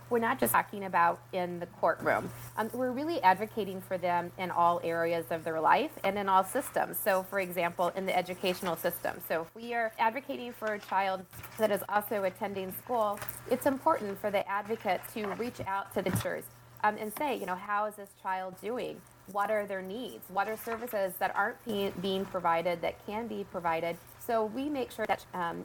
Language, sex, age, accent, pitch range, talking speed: English, female, 30-49, American, 175-210 Hz, 200 wpm